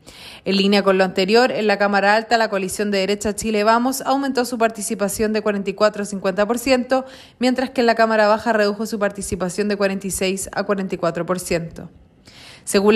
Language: Spanish